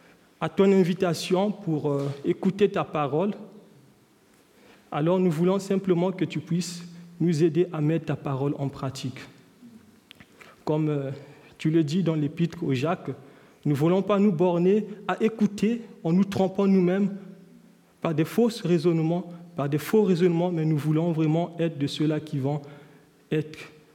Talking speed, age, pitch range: 155 wpm, 40-59, 150-200 Hz